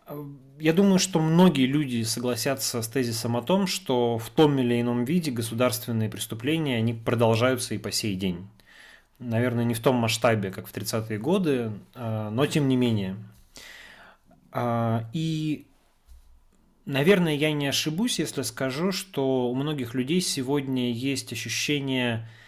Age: 20-39